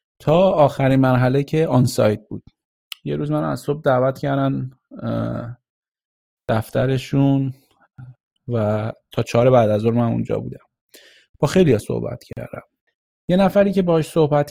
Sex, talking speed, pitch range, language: male, 135 wpm, 110-140 Hz, Persian